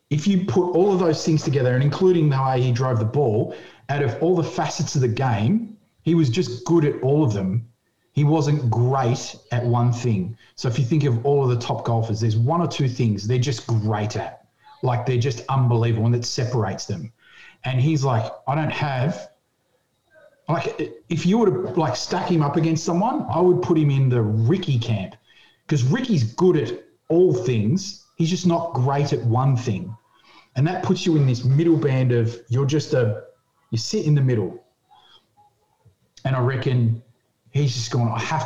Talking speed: 200 wpm